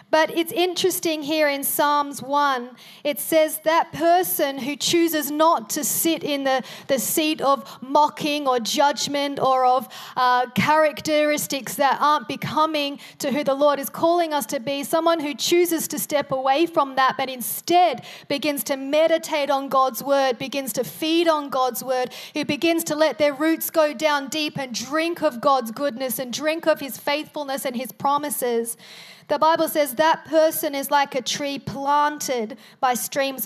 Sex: female